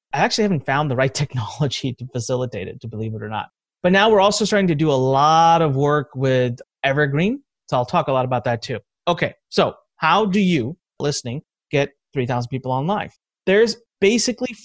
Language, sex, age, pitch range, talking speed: English, male, 30-49, 135-185 Hz, 200 wpm